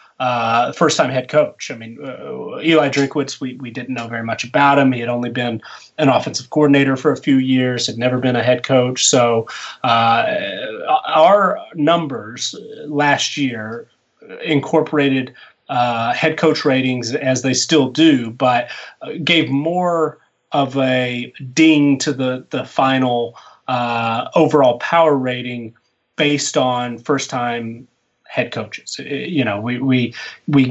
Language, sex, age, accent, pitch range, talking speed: English, male, 30-49, American, 120-145 Hz, 145 wpm